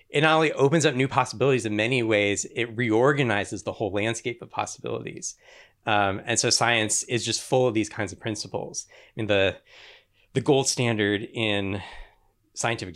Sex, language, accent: male, English, American